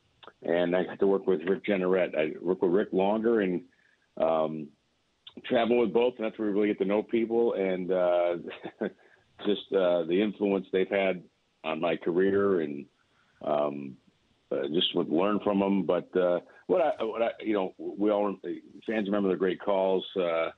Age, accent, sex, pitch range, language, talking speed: 50-69, American, male, 85-105 Hz, English, 175 wpm